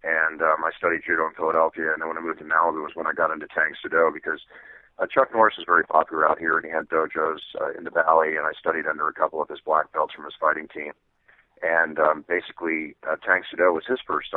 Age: 40-59